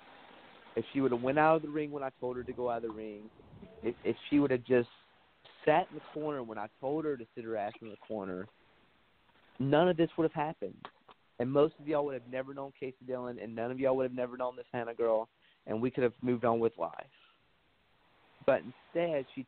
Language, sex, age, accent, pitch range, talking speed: English, male, 30-49, American, 115-140 Hz, 235 wpm